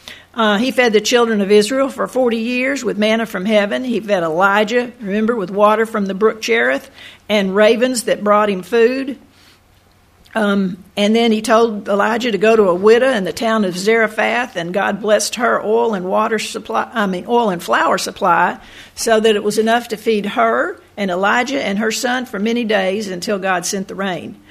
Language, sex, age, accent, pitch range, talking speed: English, female, 60-79, American, 205-235 Hz, 200 wpm